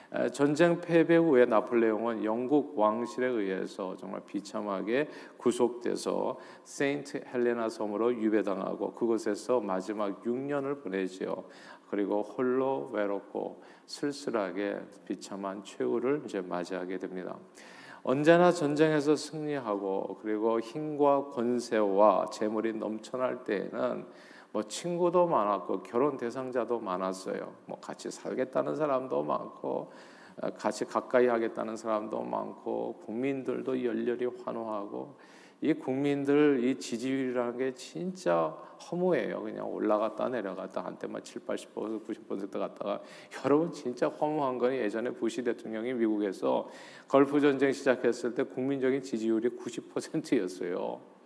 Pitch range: 110-140 Hz